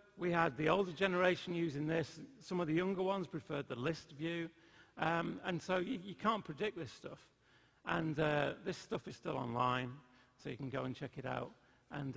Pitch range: 125-170 Hz